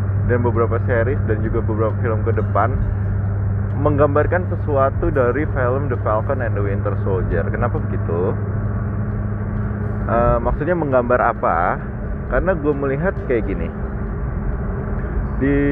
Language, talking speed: Indonesian, 120 wpm